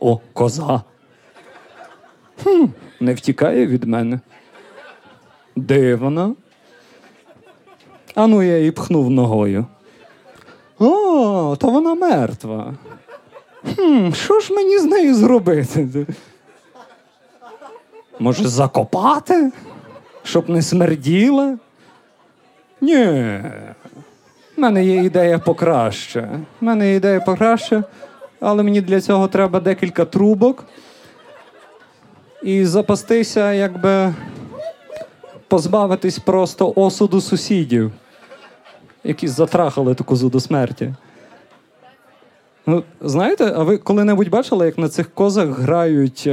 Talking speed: 95 wpm